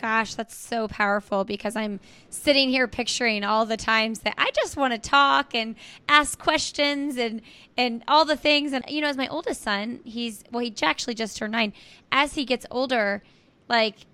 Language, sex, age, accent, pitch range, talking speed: English, female, 20-39, American, 225-280 Hz, 190 wpm